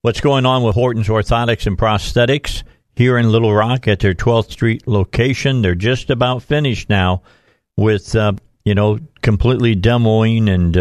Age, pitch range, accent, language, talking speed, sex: 50-69, 100-120 Hz, American, English, 165 wpm, male